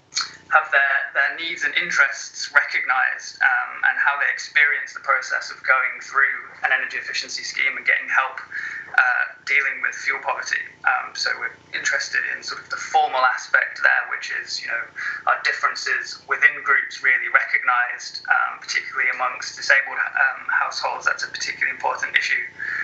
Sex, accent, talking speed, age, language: male, British, 160 wpm, 20-39, English